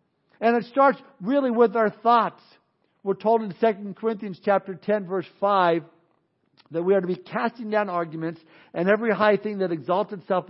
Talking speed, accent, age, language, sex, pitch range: 175 wpm, American, 60-79, English, male, 175-220 Hz